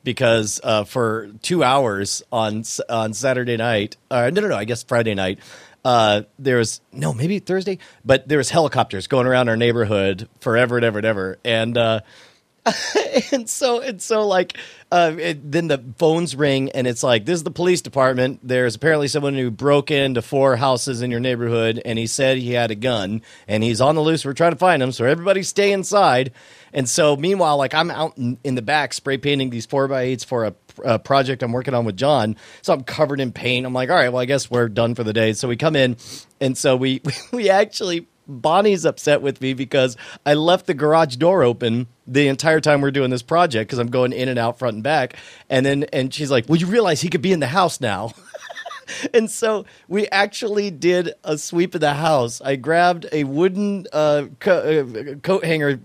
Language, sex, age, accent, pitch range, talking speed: English, male, 40-59, American, 125-165 Hz, 215 wpm